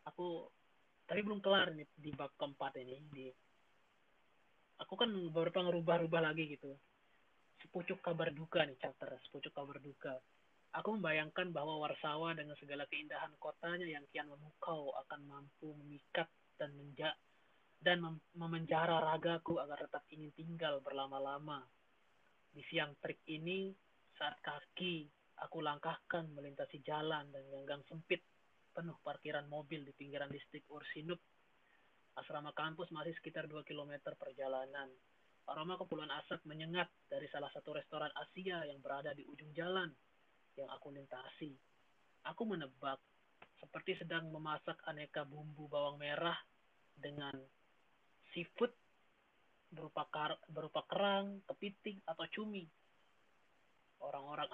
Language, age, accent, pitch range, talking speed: Indonesian, 20-39, native, 145-170 Hz, 125 wpm